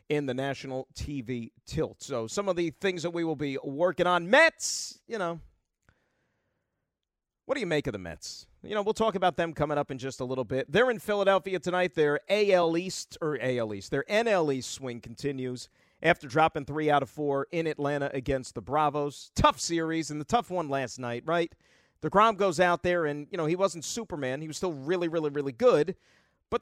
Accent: American